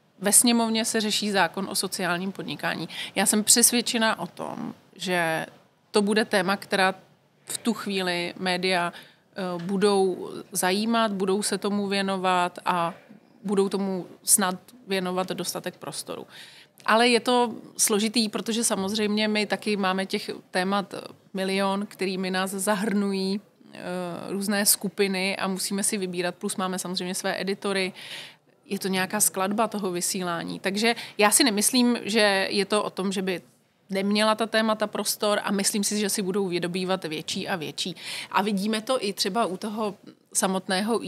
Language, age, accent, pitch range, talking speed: Czech, 30-49, native, 185-215 Hz, 145 wpm